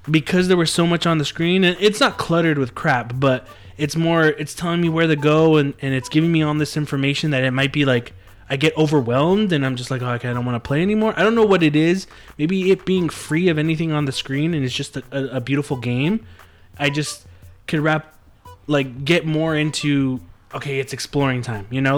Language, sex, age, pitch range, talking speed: English, male, 20-39, 125-150 Hz, 240 wpm